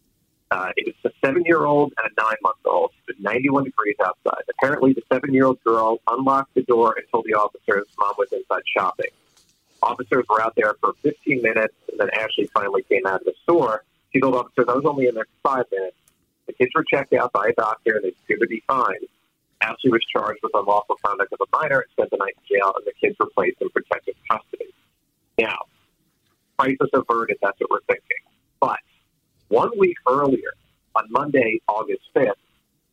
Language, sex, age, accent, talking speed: English, male, 40-59, American, 195 wpm